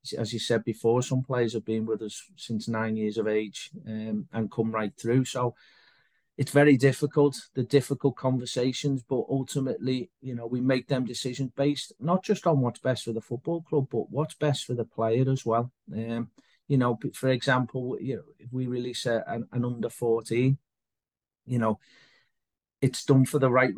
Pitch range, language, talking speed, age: 115-130 Hz, English, 190 wpm, 40-59